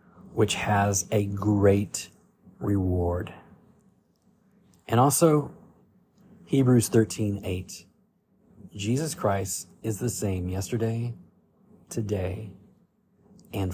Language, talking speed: English, 80 wpm